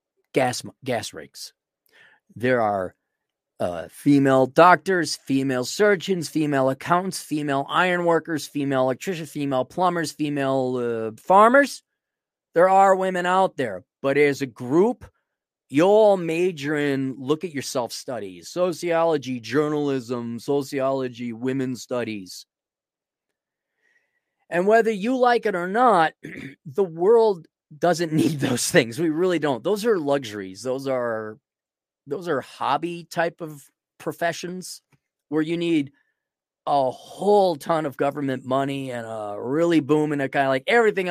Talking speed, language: 130 wpm, English